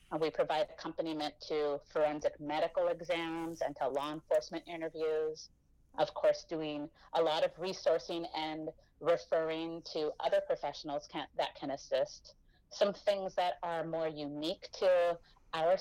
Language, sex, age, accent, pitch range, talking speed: English, female, 30-49, American, 150-190 Hz, 135 wpm